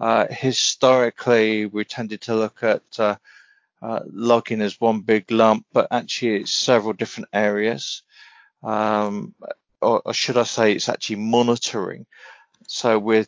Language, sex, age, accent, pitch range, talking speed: English, male, 40-59, British, 105-120 Hz, 140 wpm